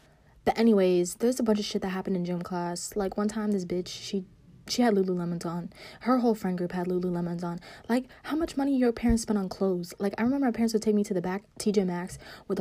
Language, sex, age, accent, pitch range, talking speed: English, female, 20-39, American, 180-215 Hz, 250 wpm